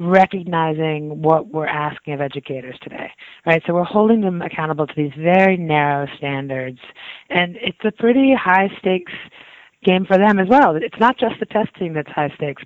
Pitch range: 155-205 Hz